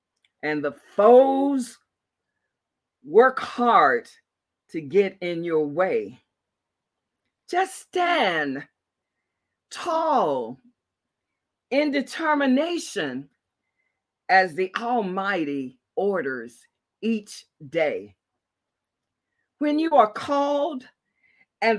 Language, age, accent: English, 40-59, American